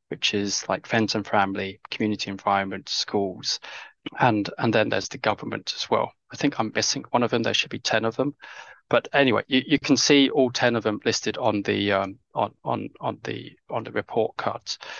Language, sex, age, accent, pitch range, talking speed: English, male, 20-39, British, 110-125 Hz, 210 wpm